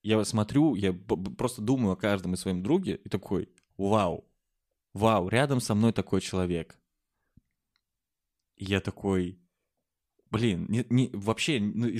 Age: 20-39